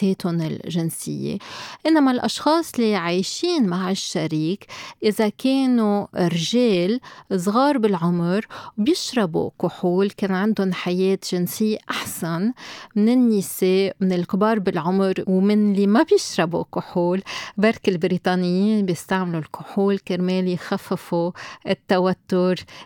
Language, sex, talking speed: Arabic, female, 95 wpm